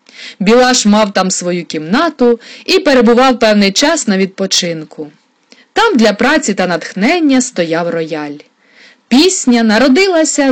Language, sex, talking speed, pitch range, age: Ukrainian, female, 115 wpm, 185-260 Hz, 20-39